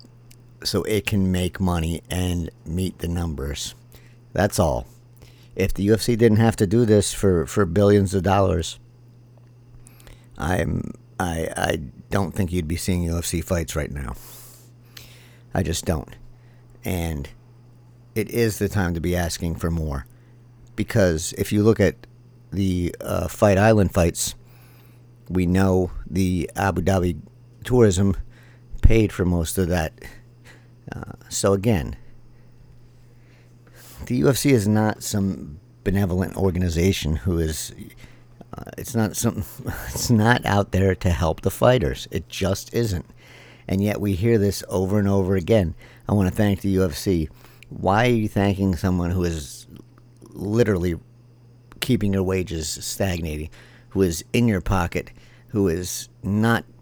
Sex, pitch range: male, 90-120 Hz